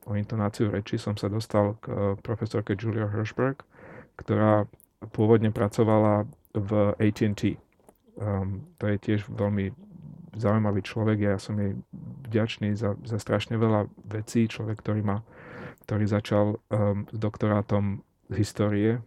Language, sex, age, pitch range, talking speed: Slovak, male, 30-49, 105-115 Hz, 130 wpm